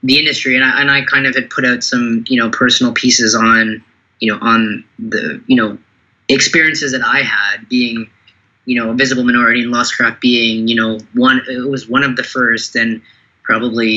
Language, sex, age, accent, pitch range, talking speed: English, male, 20-39, American, 115-135 Hz, 200 wpm